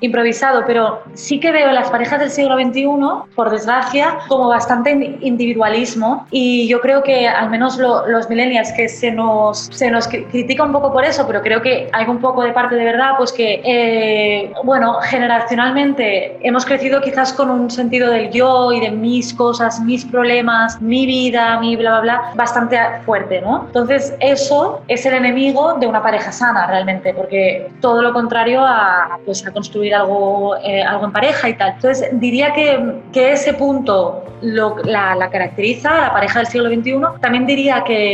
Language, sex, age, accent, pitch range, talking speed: Spanish, female, 20-39, Spanish, 220-260 Hz, 185 wpm